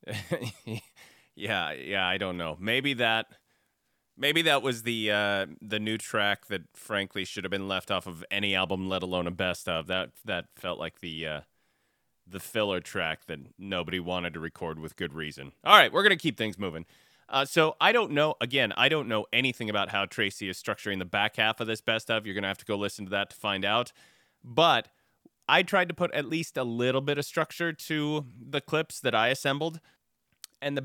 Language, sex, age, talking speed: English, male, 30-49, 210 wpm